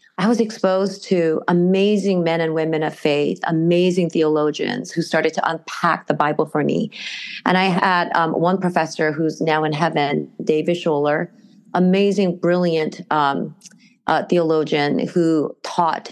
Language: English